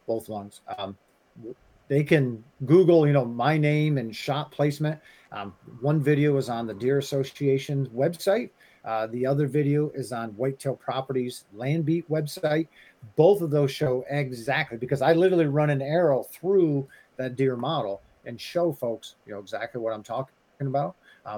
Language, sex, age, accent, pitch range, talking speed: English, male, 40-59, American, 130-165 Hz, 165 wpm